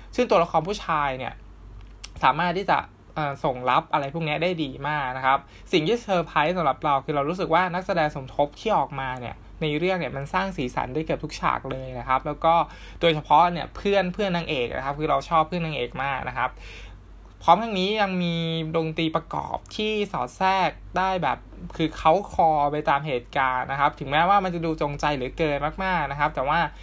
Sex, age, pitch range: male, 20-39, 140-170 Hz